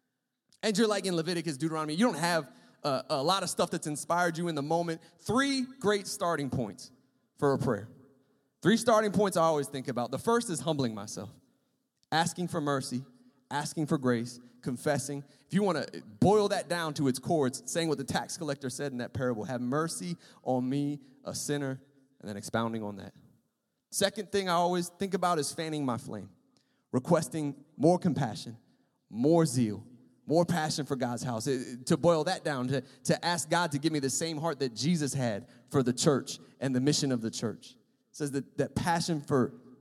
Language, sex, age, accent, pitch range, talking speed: English, male, 30-49, American, 130-175 Hz, 195 wpm